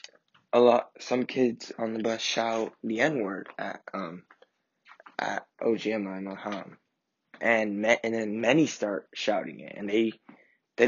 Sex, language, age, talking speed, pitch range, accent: male, English, 20-39, 155 wpm, 110-120 Hz, American